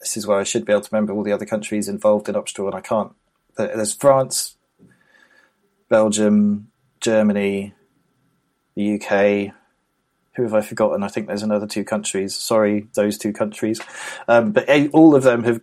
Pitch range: 100-115 Hz